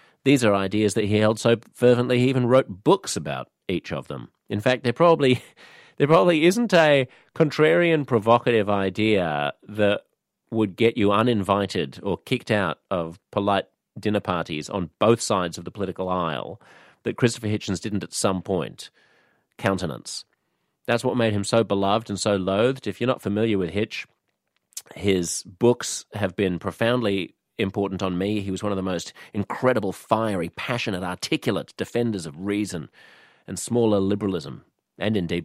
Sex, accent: male, Australian